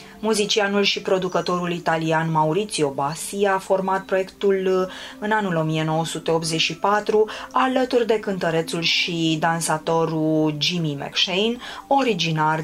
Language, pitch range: Romanian, 150-205 Hz